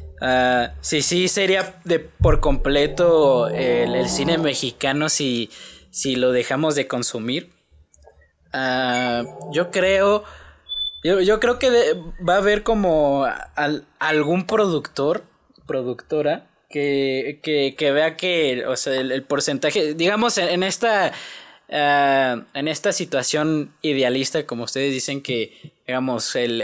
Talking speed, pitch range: 130 wpm, 130-165 Hz